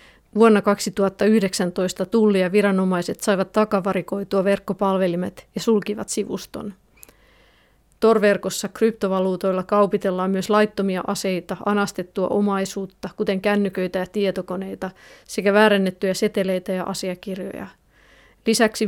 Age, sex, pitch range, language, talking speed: 30-49, female, 190-215 Hz, Finnish, 90 wpm